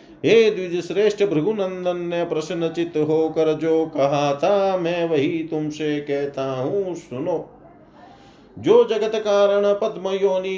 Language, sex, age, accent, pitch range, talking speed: Hindi, male, 40-59, native, 150-185 Hz, 115 wpm